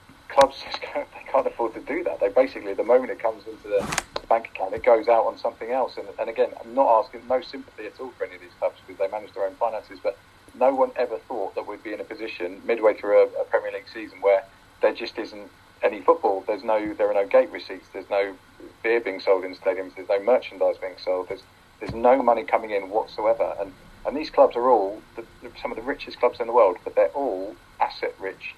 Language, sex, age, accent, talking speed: English, male, 40-59, British, 245 wpm